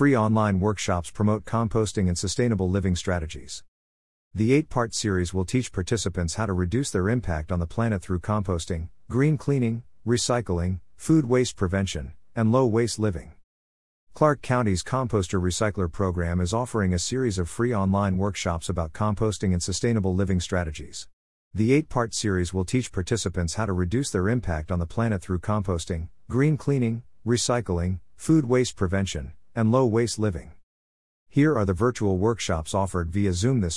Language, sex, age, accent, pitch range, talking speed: English, male, 50-69, American, 90-115 Hz, 160 wpm